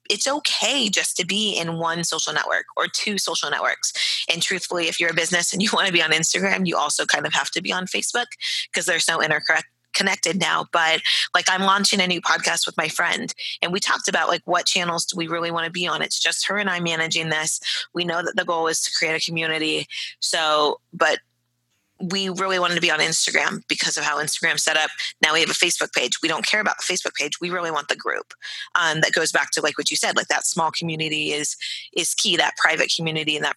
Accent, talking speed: American, 240 wpm